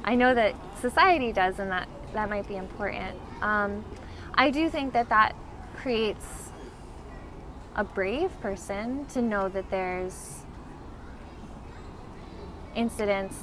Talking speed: 115 wpm